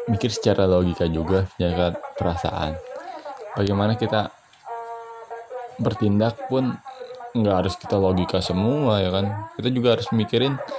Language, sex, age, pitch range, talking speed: Indonesian, male, 20-39, 110-175 Hz, 115 wpm